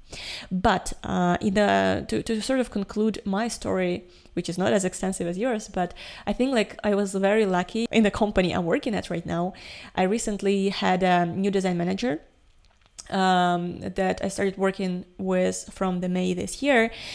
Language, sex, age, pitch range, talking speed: English, female, 20-39, 175-205 Hz, 180 wpm